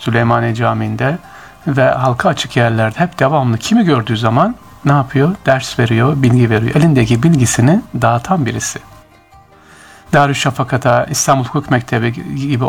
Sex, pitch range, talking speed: male, 120-160 Hz, 130 wpm